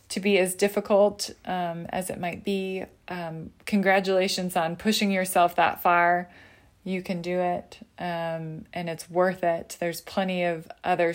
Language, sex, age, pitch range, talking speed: English, female, 20-39, 165-190 Hz, 155 wpm